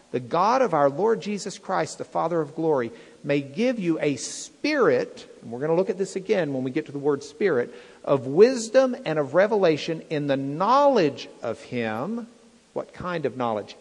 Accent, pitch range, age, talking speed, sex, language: American, 125-190 Hz, 50-69, 195 wpm, male, English